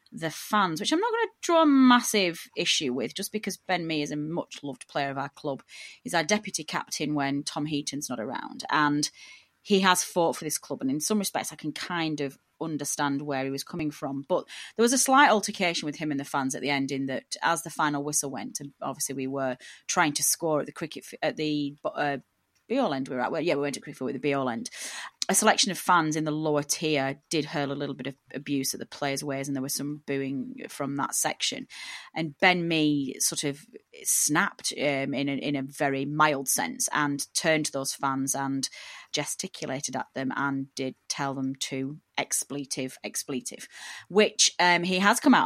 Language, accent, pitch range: English, British, 140-175 Hz